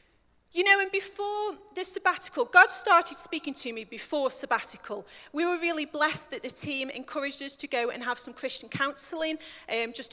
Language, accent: English, British